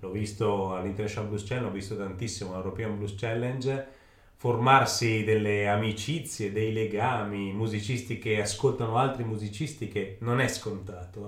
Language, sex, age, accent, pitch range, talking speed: Italian, male, 30-49, native, 100-120 Hz, 135 wpm